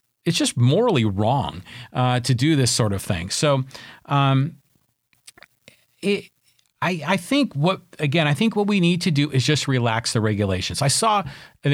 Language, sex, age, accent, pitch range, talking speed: English, male, 40-59, American, 120-150 Hz, 175 wpm